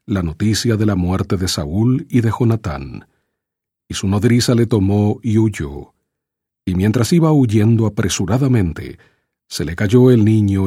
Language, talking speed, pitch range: English, 150 wpm, 95-125 Hz